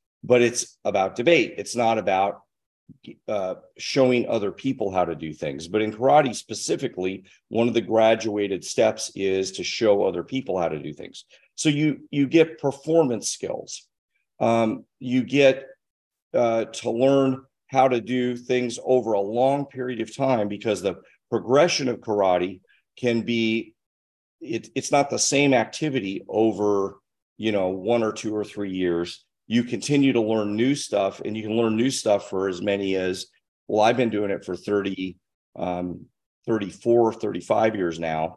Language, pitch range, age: English, 95-125 Hz, 40-59